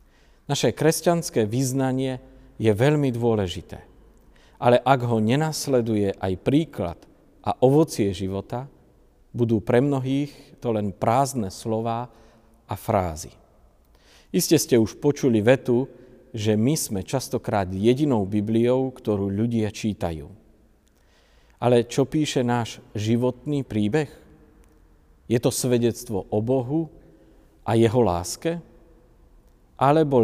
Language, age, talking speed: Slovak, 50-69, 105 wpm